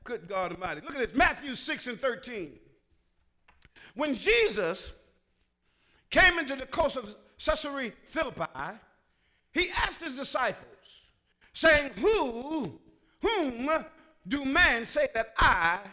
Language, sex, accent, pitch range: English, male, American, 235-315 Hz